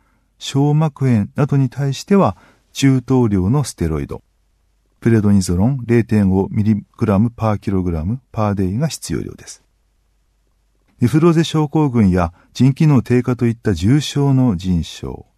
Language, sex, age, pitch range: Japanese, male, 40-59, 100-135 Hz